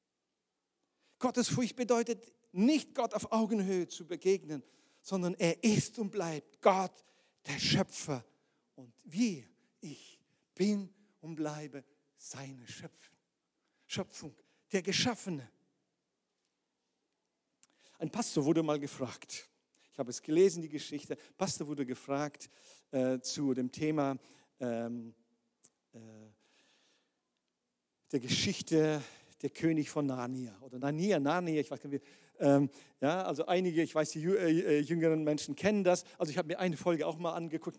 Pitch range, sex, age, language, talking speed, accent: 140-185 Hz, male, 50-69, German, 130 wpm, German